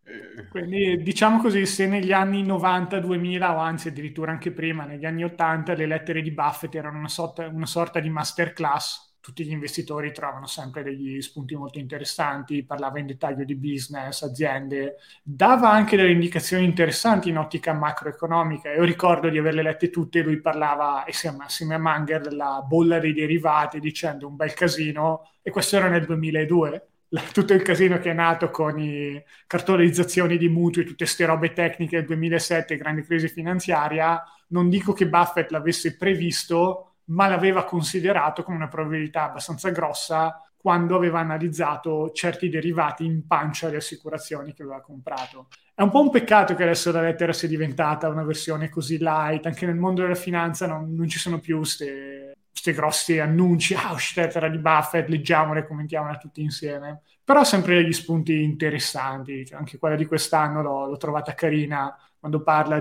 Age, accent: 20-39, native